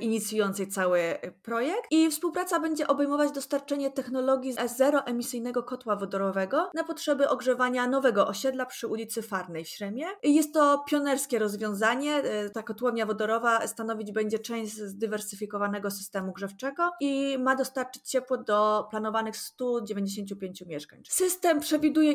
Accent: native